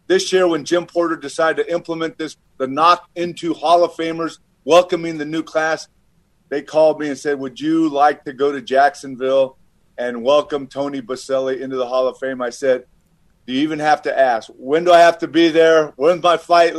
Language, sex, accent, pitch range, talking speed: English, male, American, 145-175 Hz, 205 wpm